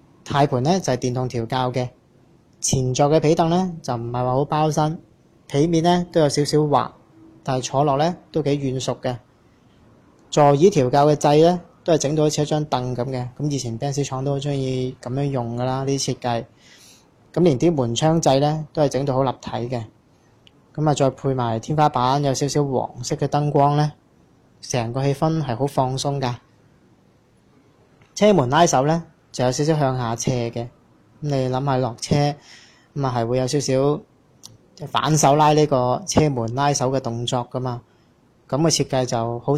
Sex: male